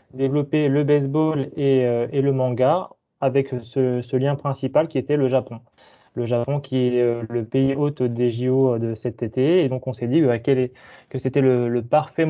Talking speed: 215 wpm